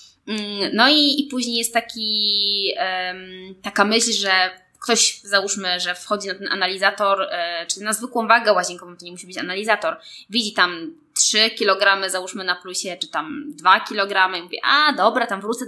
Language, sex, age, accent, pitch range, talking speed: Polish, female, 20-39, native, 185-220 Hz, 165 wpm